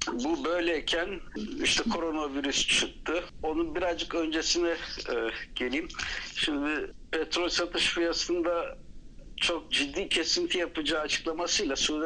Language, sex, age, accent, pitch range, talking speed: Turkish, male, 60-79, native, 145-175 Hz, 100 wpm